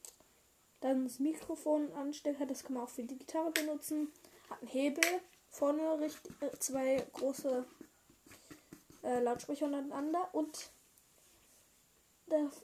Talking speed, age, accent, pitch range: 105 wpm, 10-29, German, 255-315 Hz